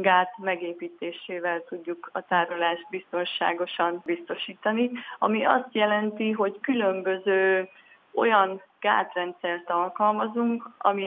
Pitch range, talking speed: 180-215 Hz, 85 wpm